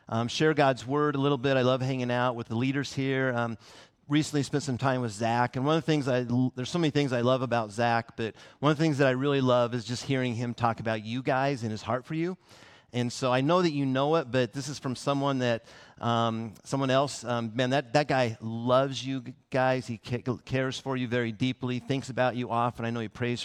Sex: male